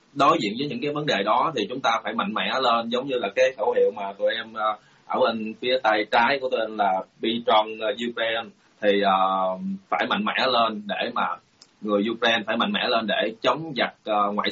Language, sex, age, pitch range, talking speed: Vietnamese, male, 20-39, 100-120 Hz, 230 wpm